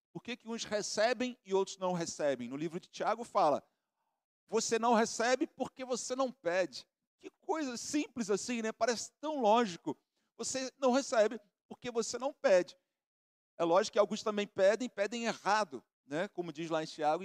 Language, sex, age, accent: Portuguese, male, 50-69, Brazilian